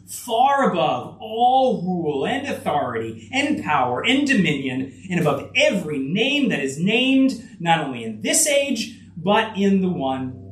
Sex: male